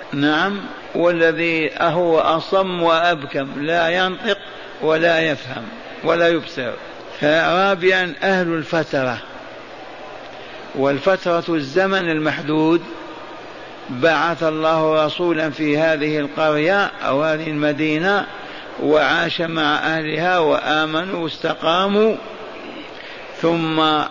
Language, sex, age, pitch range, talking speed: Arabic, male, 60-79, 155-180 Hz, 80 wpm